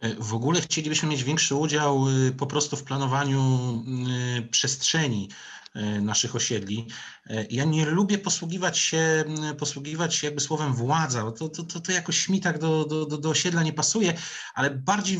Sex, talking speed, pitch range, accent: male, 150 wpm, 130-165 Hz, native